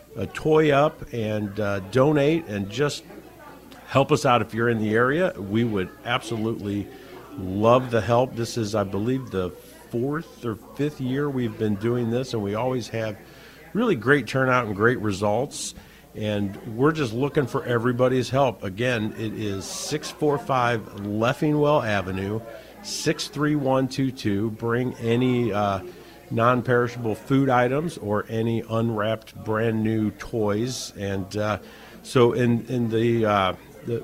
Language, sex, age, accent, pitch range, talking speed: English, male, 50-69, American, 105-130 Hz, 140 wpm